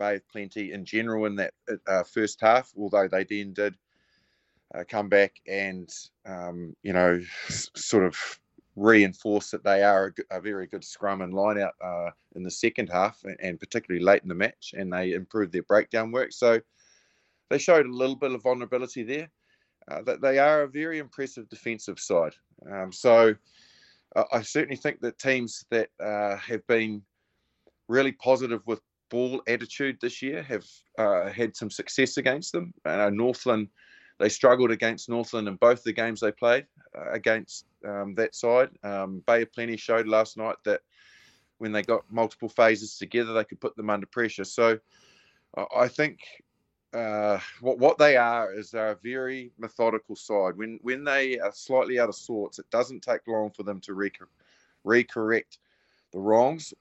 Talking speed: 175 wpm